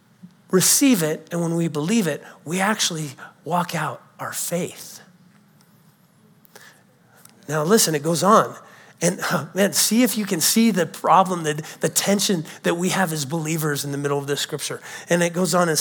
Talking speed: 175 wpm